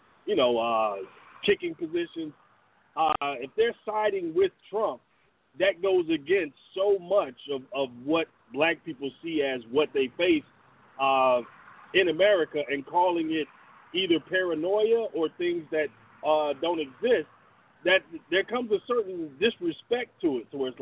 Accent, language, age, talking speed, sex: American, English, 40-59, 145 wpm, male